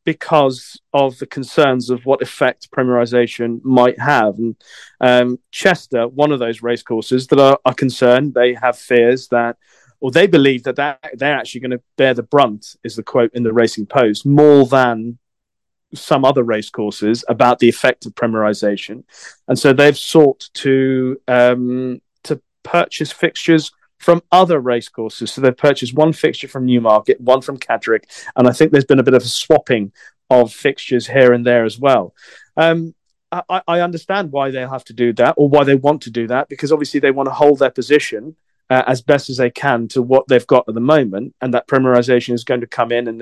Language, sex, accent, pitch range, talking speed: English, male, British, 120-145 Hz, 200 wpm